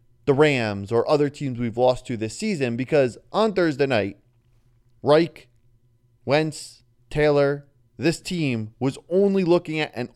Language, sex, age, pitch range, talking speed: English, male, 20-39, 120-155 Hz, 140 wpm